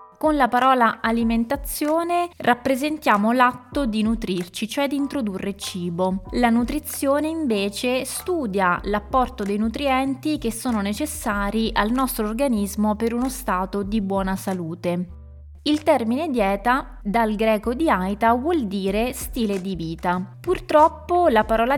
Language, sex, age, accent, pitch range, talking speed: Italian, female, 20-39, native, 195-260 Hz, 125 wpm